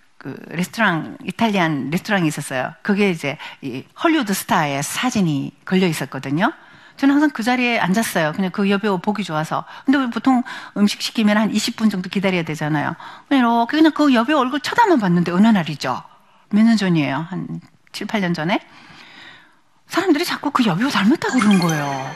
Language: Korean